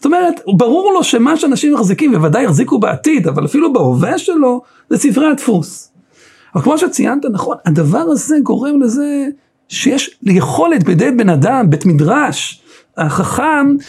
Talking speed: 145 wpm